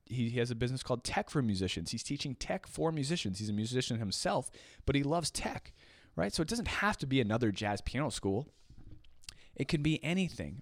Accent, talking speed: American, 205 wpm